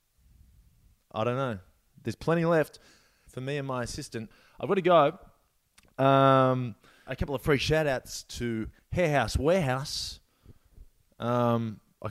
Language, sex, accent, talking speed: English, male, Australian, 135 wpm